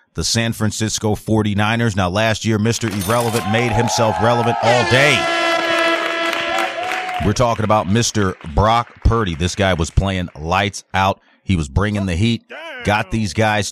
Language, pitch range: English, 85-110 Hz